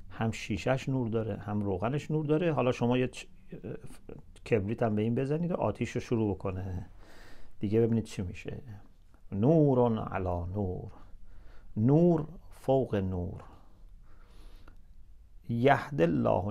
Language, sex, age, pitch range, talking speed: English, male, 50-69, 95-125 Hz, 120 wpm